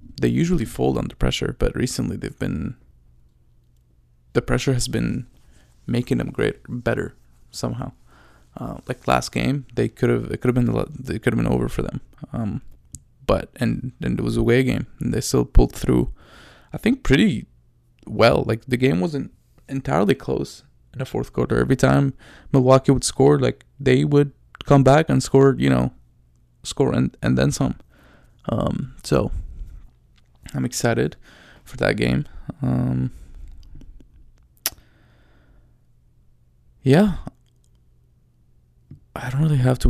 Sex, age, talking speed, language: male, 20-39, 145 wpm, English